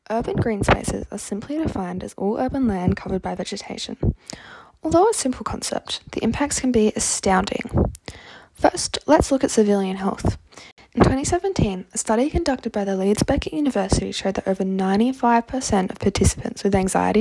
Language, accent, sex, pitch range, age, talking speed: English, Australian, female, 200-260 Hz, 10-29, 160 wpm